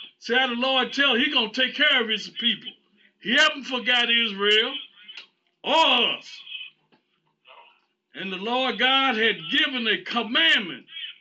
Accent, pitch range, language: American, 225-285 Hz, English